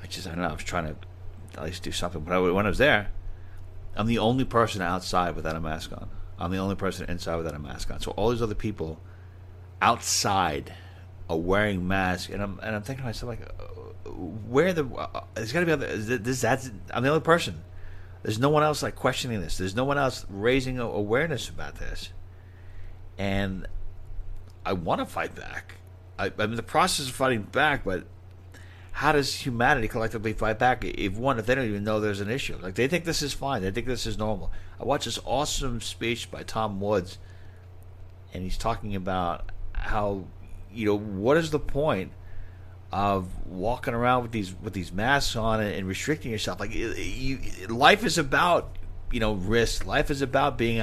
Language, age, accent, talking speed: English, 40-59, American, 200 wpm